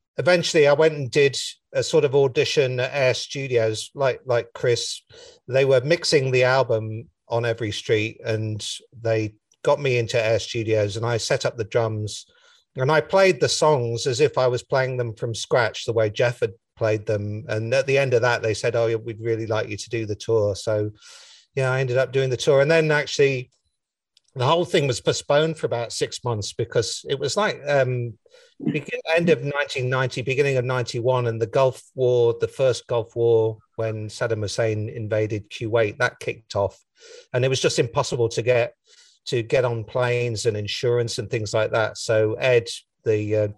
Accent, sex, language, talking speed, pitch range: British, male, Finnish, 195 wpm, 110-135 Hz